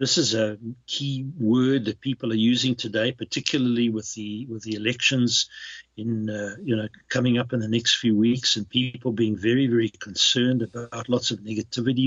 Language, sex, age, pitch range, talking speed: English, male, 60-79, 105-135 Hz, 185 wpm